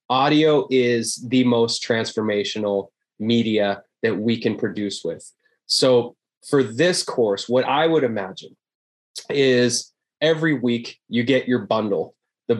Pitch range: 115-135 Hz